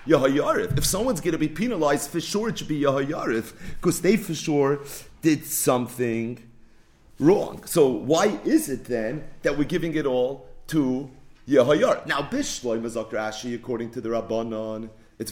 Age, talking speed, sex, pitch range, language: 30-49, 160 wpm, male, 120-160 Hz, English